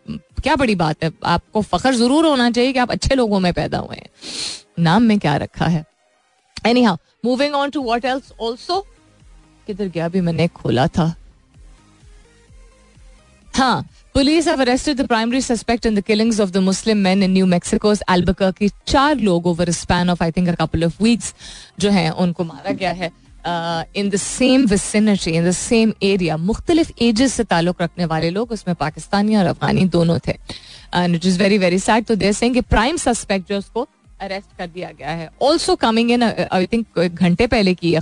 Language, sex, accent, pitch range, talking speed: Hindi, female, native, 175-230 Hz, 150 wpm